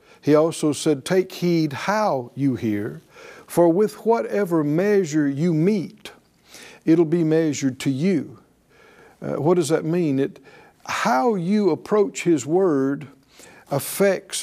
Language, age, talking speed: English, 60-79, 130 wpm